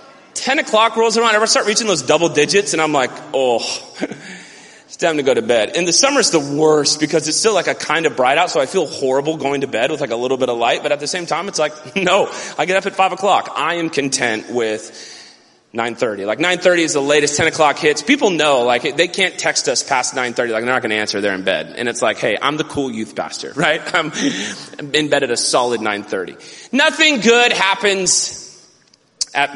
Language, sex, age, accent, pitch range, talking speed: English, male, 30-49, American, 130-170 Hz, 230 wpm